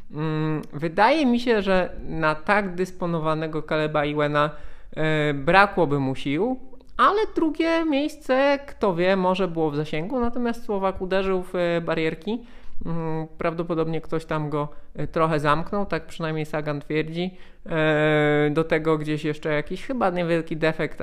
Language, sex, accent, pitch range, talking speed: Polish, male, native, 140-175 Hz, 125 wpm